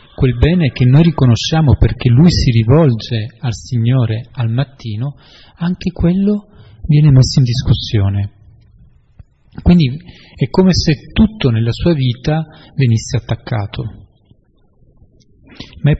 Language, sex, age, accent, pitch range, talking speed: Italian, male, 40-59, native, 115-155 Hz, 115 wpm